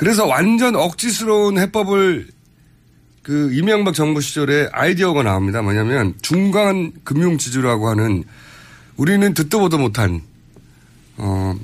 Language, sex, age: Korean, male, 40-59